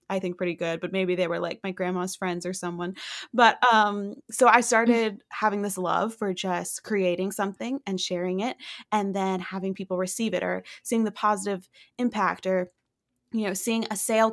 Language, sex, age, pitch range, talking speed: English, female, 20-39, 185-220 Hz, 195 wpm